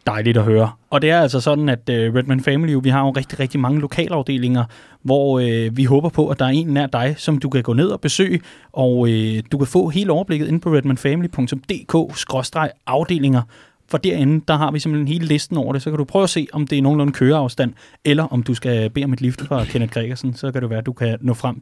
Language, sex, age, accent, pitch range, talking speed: Danish, male, 30-49, native, 130-160 Hz, 235 wpm